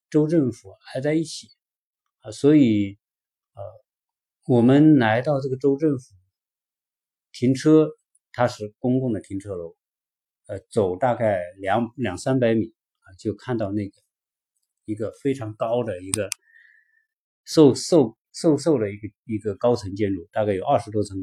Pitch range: 100-155 Hz